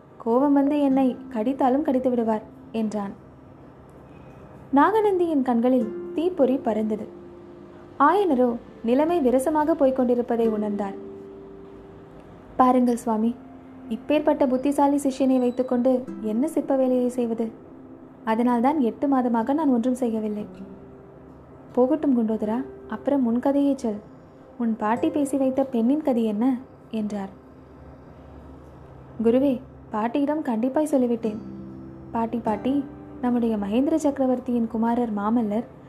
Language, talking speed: Tamil, 90 wpm